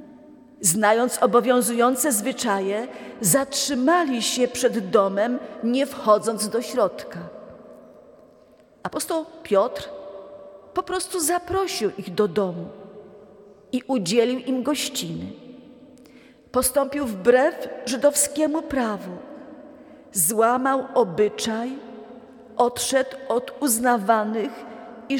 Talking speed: 80 wpm